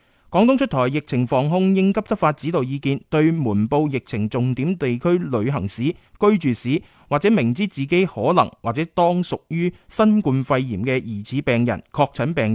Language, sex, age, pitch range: Chinese, male, 20-39, 120-175 Hz